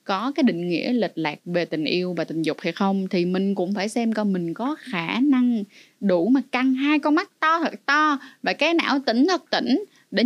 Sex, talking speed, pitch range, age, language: female, 235 wpm, 185-255 Hz, 20-39, Vietnamese